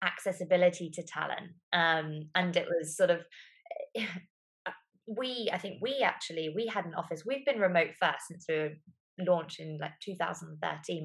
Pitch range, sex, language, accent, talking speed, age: 165-210 Hz, female, English, British, 155 wpm, 20-39